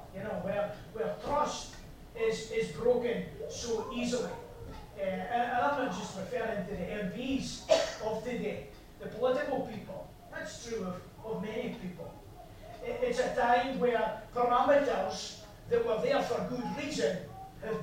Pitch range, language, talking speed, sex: 205-260 Hz, English, 145 wpm, male